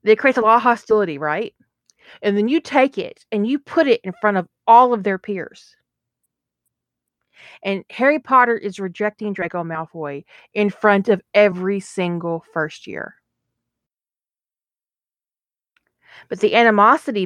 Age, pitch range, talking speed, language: 30-49, 185-225 Hz, 140 wpm, English